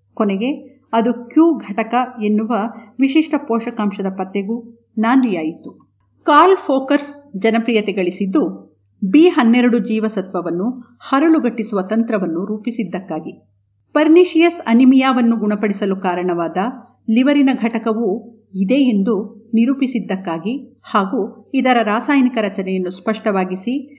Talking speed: 80 wpm